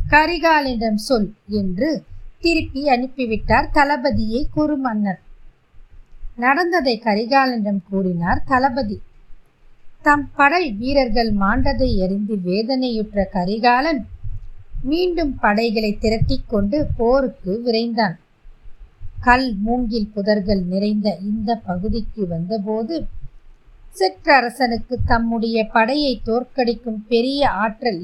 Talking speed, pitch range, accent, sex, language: 75 wpm, 200-270 Hz, native, female, Tamil